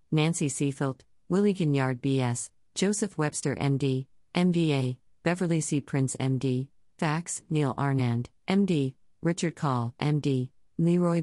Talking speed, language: 110 wpm, English